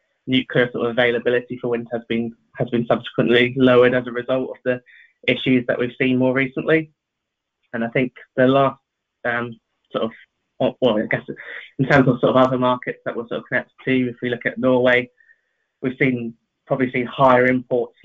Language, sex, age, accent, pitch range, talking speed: English, male, 20-39, British, 120-130 Hz, 200 wpm